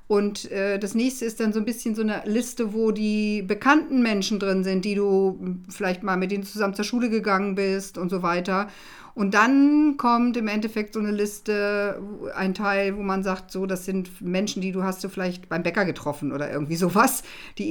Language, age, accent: German, 50-69, German